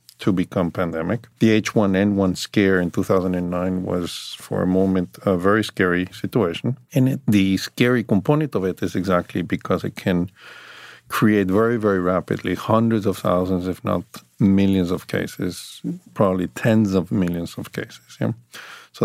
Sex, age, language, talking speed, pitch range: male, 50-69, English, 150 wpm, 95-110 Hz